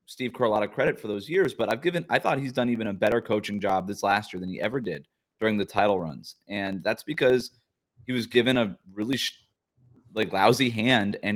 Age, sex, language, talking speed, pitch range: 20-39, male, English, 230 wpm, 105-120 Hz